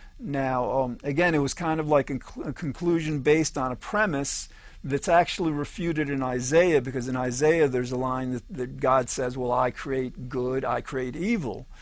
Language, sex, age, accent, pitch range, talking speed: English, male, 50-69, American, 130-160 Hz, 195 wpm